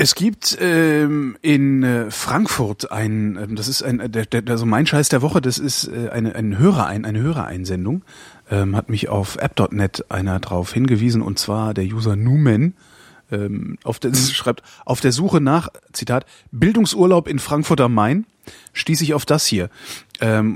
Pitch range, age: 105-140 Hz, 30-49